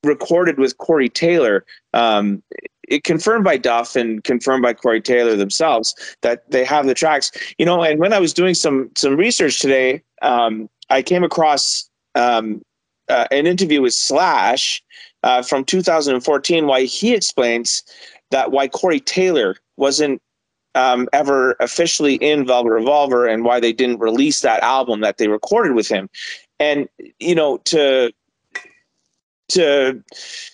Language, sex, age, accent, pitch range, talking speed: English, male, 30-49, American, 125-195 Hz, 145 wpm